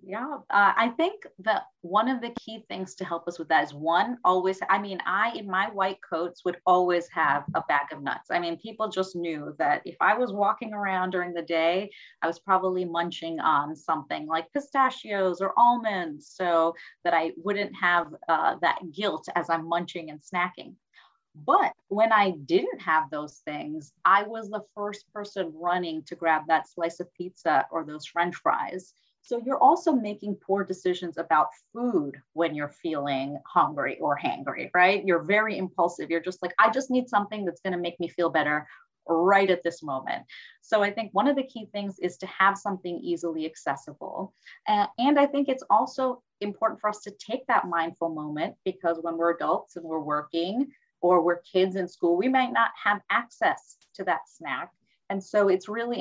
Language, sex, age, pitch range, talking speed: English, female, 30-49, 170-210 Hz, 190 wpm